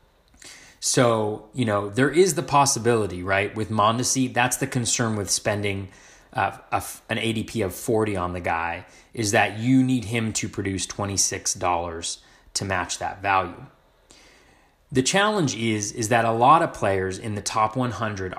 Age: 30-49